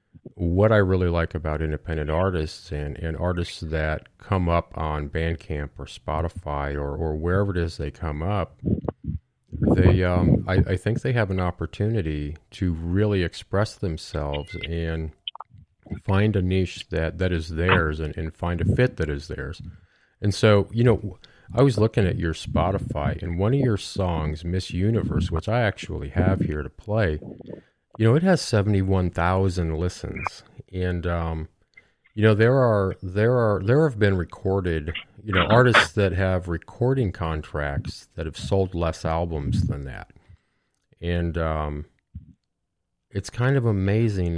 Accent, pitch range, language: American, 80-100 Hz, English